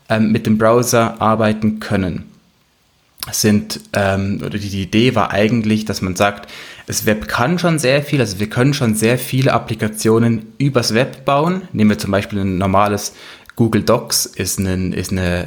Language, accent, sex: German, German, male